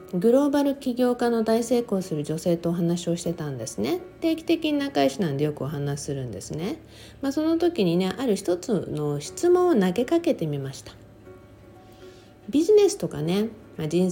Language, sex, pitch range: Japanese, female, 155-240 Hz